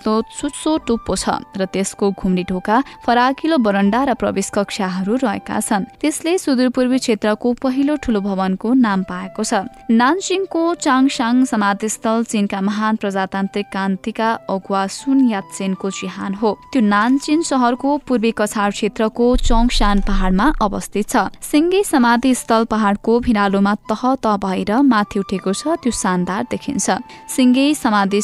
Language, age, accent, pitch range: English, 20-39, Indian, 200-255 Hz